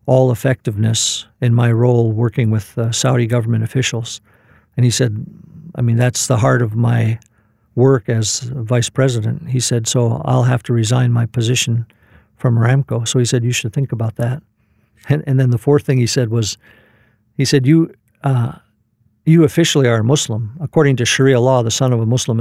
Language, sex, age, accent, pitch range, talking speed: English, male, 50-69, American, 115-135 Hz, 185 wpm